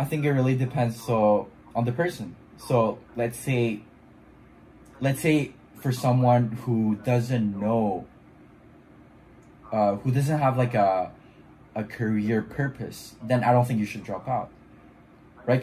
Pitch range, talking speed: 110-135 Hz, 140 wpm